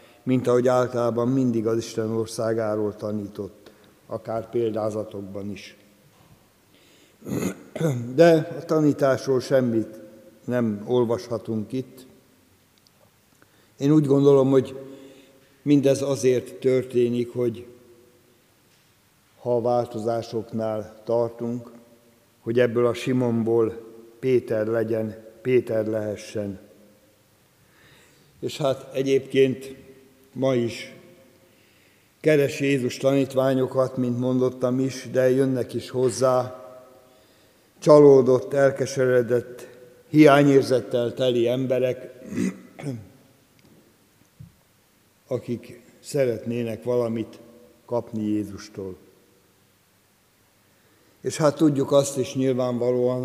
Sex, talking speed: male, 80 wpm